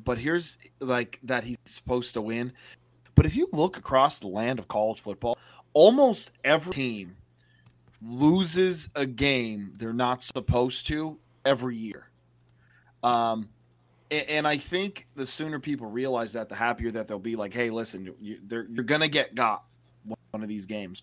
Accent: American